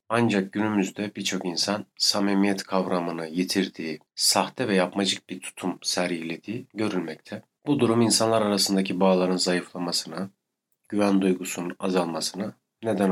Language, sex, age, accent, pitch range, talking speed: Turkish, male, 40-59, native, 90-100 Hz, 110 wpm